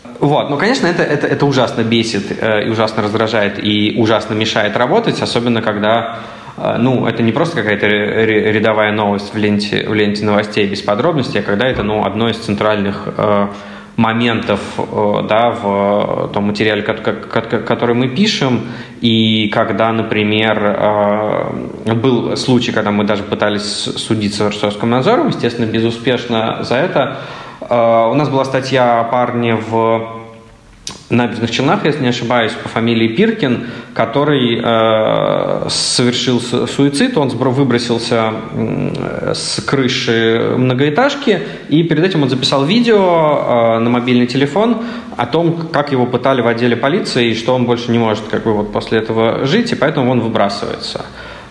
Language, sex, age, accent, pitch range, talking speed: Russian, male, 20-39, native, 110-130 Hz, 135 wpm